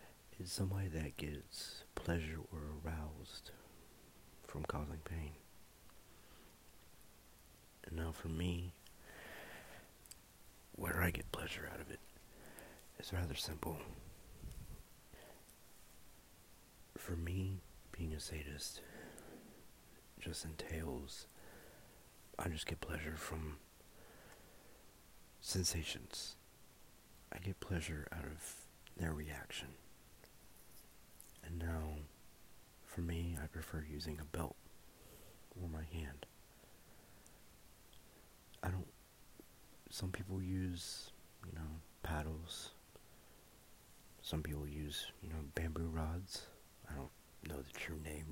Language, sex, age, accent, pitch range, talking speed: English, male, 50-69, American, 75-90 Hz, 95 wpm